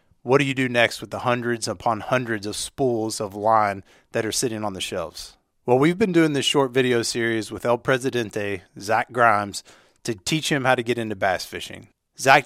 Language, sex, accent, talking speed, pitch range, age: English, male, American, 205 wpm, 105-125 Hz, 30-49